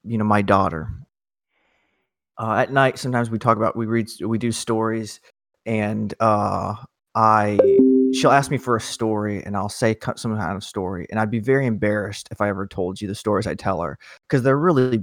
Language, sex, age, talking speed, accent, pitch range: English, male, 30-49, 205 wpm, American, 110-130 Hz